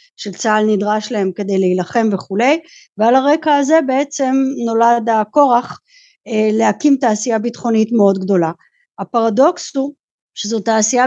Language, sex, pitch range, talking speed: Hebrew, female, 215-270 Hz, 115 wpm